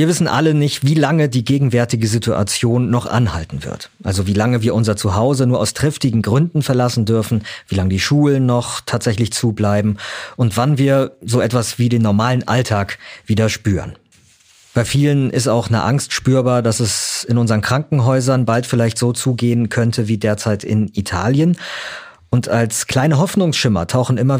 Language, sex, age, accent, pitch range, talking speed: German, male, 40-59, German, 110-135 Hz, 170 wpm